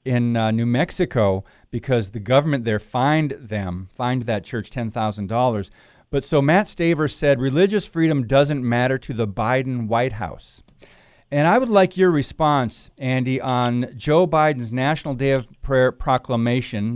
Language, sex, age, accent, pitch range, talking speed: English, male, 40-59, American, 120-145 Hz, 150 wpm